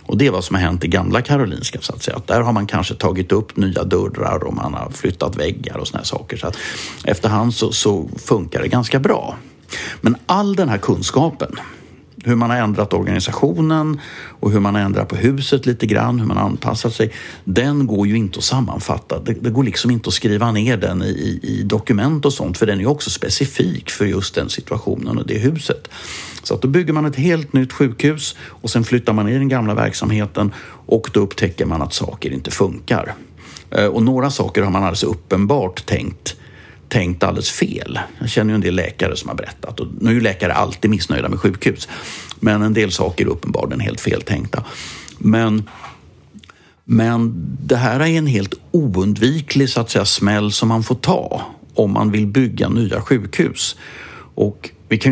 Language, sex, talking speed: English, male, 195 wpm